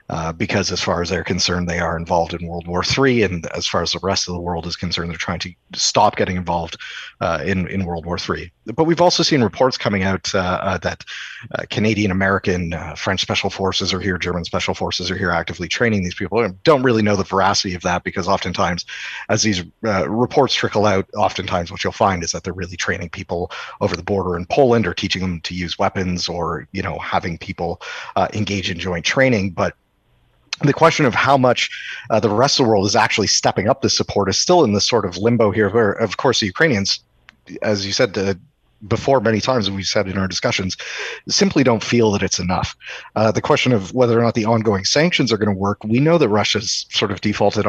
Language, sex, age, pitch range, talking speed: English, male, 30-49, 90-110 Hz, 225 wpm